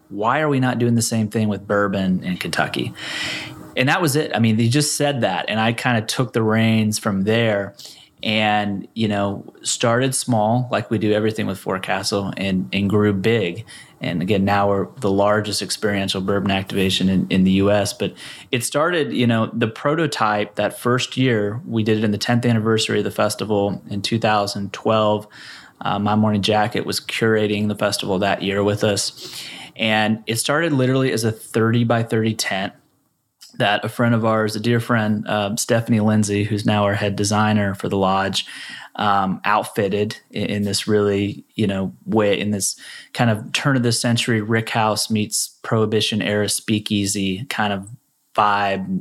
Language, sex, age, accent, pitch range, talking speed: English, male, 30-49, American, 100-115 Hz, 180 wpm